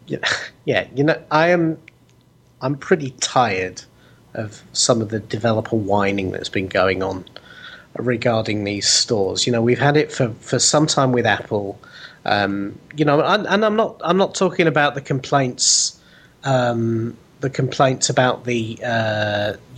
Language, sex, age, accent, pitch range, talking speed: English, male, 30-49, British, 115-150 Hz, 160 wpm